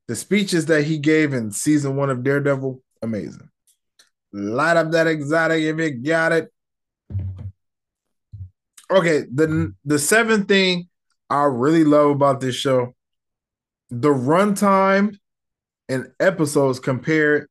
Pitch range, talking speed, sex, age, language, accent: 130-160 Hz, 125 wpm, male, 20-39, English, American